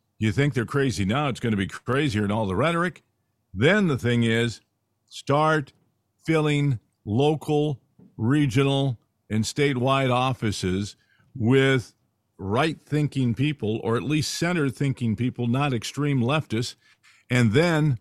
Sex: male